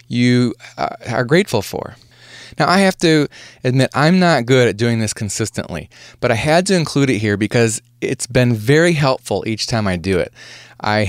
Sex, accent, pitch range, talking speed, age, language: male, American, 105-130 Hz, 185 wpm, 20-39, English